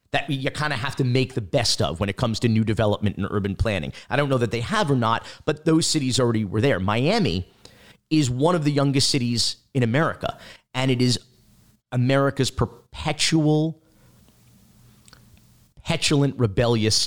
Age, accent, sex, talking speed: 40-59, American, male, 170 wpm